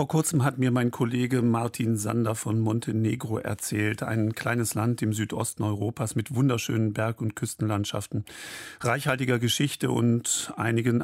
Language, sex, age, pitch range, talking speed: German, male, 50-69, 110-135 Hz, 140 wpm